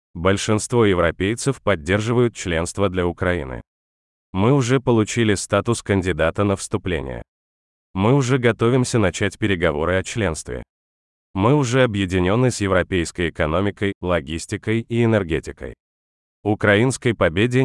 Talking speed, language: 105 wpm, Russian